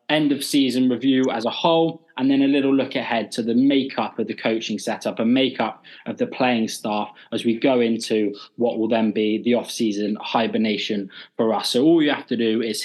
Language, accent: English, British